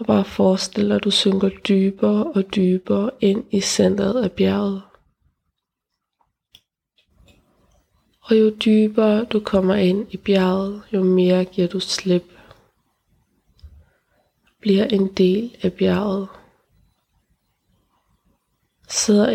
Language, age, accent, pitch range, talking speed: Danish, 20-39, native, 185-210 Hz, 100 wpm